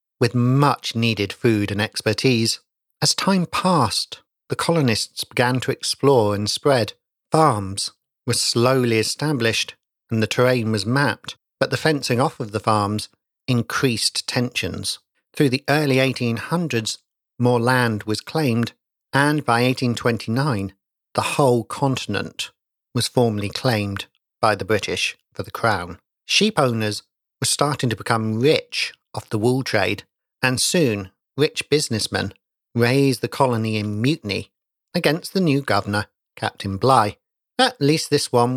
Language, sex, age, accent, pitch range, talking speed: English, male, 50-69, British, 110-140 Hz, 135 wpm